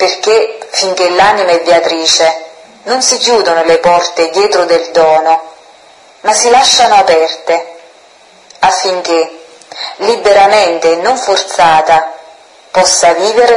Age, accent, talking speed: 30-49, native, 105 wpm